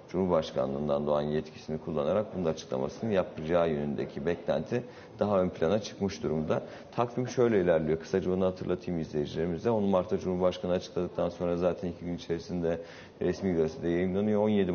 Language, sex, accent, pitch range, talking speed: Turkish, male, native, 80-95 Hz, 140 wpm